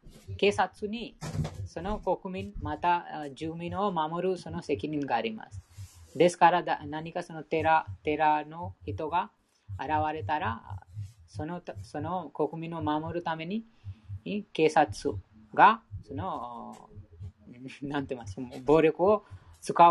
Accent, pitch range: Indian, 105-160 Hz